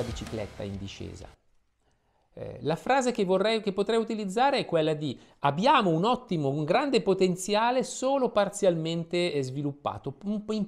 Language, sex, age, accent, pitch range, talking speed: Italian, male, 50-69, native, 145-195 Hz, 135 wpm